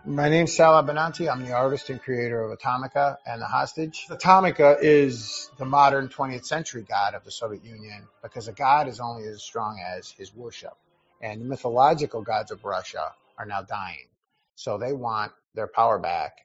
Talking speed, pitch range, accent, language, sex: 185 wpm, 110-150 Hz, American, English, male